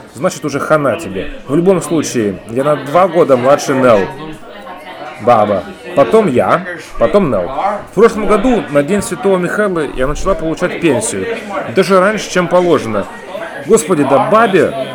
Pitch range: 130-185 Hz